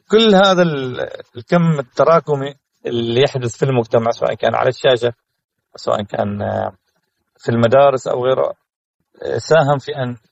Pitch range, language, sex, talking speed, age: 120-150 Hz, Arabic, male, 120 wpm, 40-59